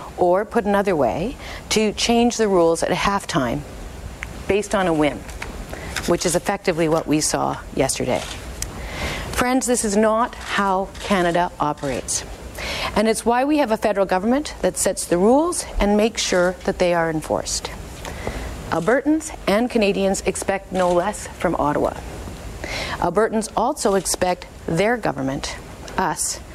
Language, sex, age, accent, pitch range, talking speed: English, female, 50-69, American, 165-220 Hz, 140 wpm